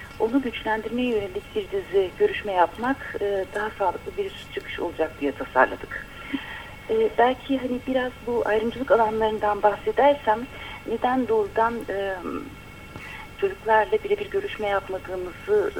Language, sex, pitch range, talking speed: Turkish, female, 175-235 Hz, 110 wpm